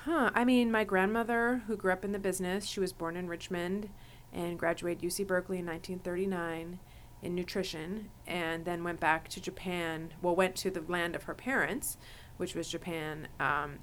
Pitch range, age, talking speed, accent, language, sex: 155-185 Hz, 30-49, 180 wpm, American, English, female